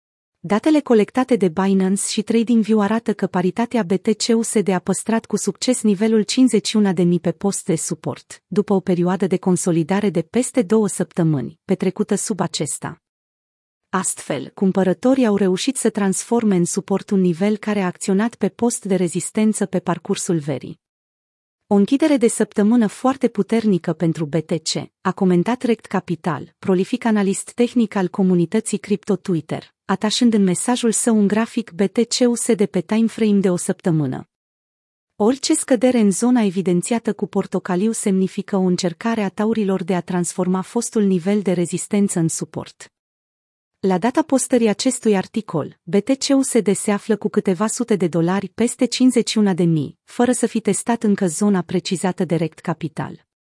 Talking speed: 145 wpm